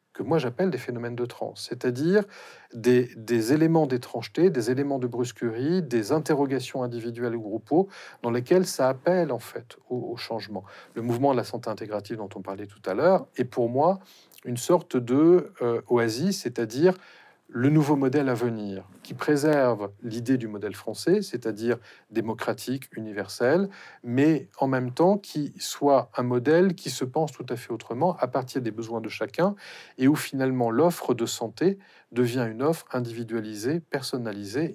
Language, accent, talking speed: French, French, 170 wpm